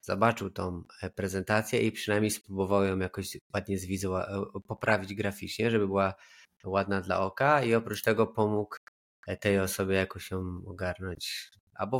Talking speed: 140 wpm